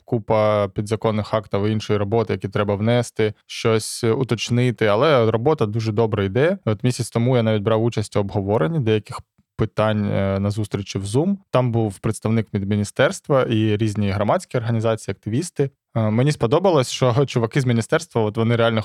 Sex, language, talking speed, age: male, Ukrainian, 155 wpm, 20-39